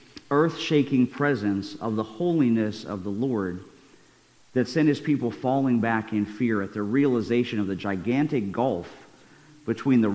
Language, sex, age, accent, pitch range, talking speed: English, male, 40-59, American, 105-135 Hz, 150 wpm